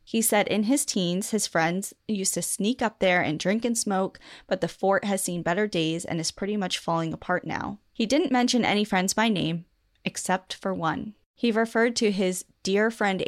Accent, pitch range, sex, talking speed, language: American, 170-210 Hz, female, 210 wpm, English